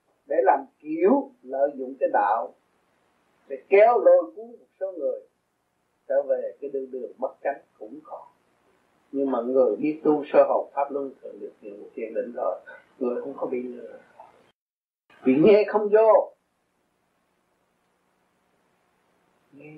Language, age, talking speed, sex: Vietnamese, 30-49, 145 wpm, male